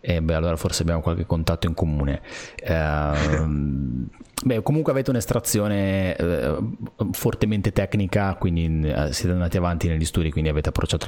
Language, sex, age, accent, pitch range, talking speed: Italian, male, 30-49, native, 85-115 Hz, 150 wpm